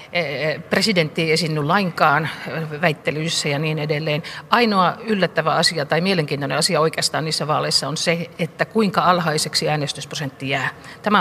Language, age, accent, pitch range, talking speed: Finnish, 50-69, native, 150-175 Hz, 135 wpm